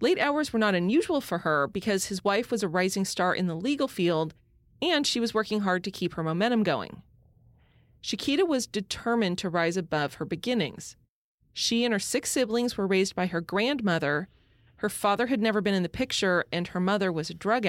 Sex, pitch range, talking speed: female, 175-225 Hz, 205 wpm